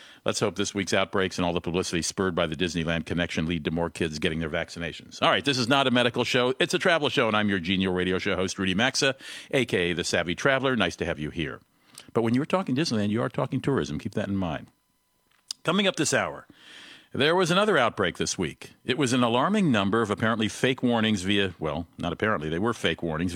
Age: 50-69